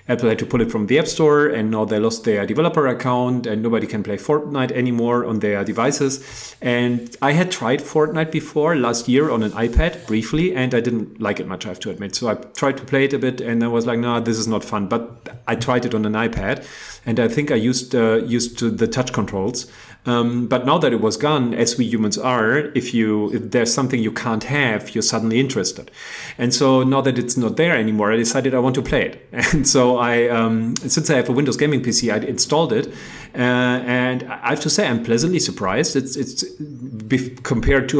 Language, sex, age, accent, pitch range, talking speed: English, male, 40-59, German, 115-135 Hz, 230 wpm